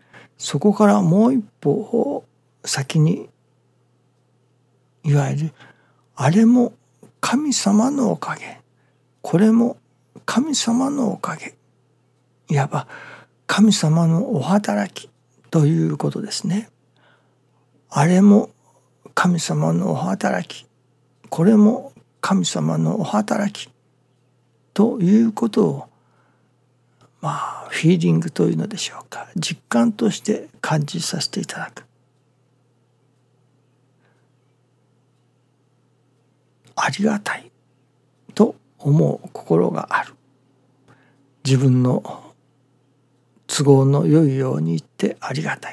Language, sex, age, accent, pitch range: Japanese, male, 60-79, native, 125-195 Hz